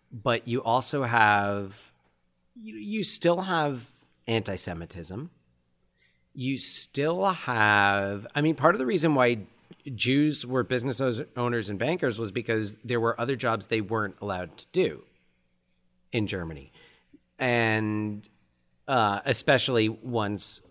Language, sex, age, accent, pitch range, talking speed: English, male, 40-59, American, 95-125 Hz, 120 wpm